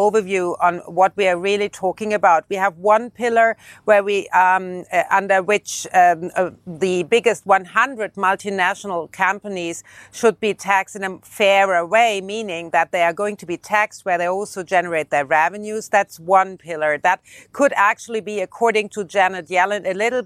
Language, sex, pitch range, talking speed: English, female, 180-220 Hz, 175 wpm